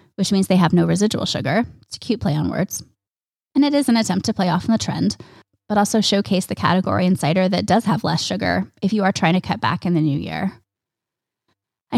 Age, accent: 20-39, American